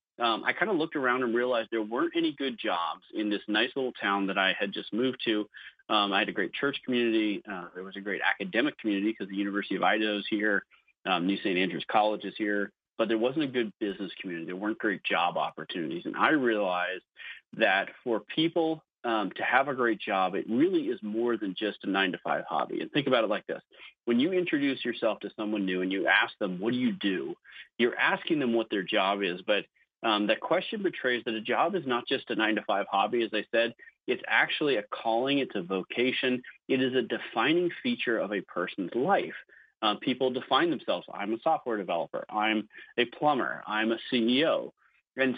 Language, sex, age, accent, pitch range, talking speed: English, male, 30-49, American, 105-130 Hz, 215 wpm